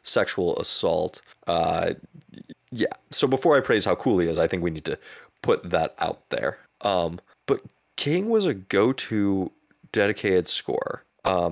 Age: 20-39